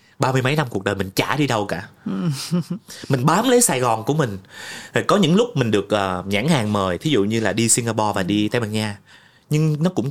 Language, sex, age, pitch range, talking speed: Vietnamese, male, 20-39, 105-155 Hz, 235 wpm